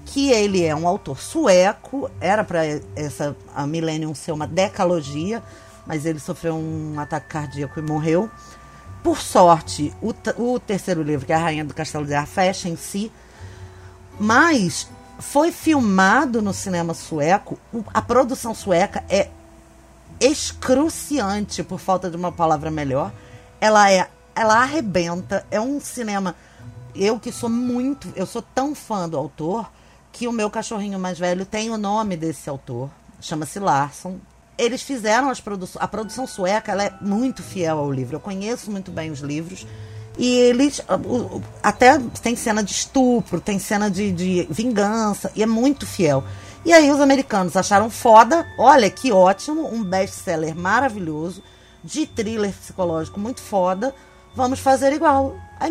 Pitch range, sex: 160-235 Hz, female